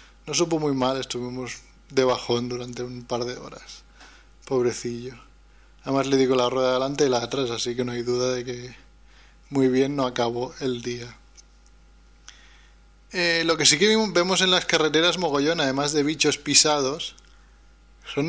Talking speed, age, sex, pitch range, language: 165 wpm, 20-39, male, 125-155 Hz, Spanish